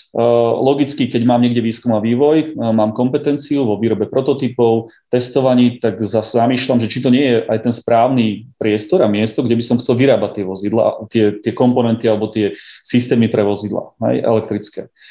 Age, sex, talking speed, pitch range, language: 30-49, male, 175 wpm, 110-125 Hz, Slovak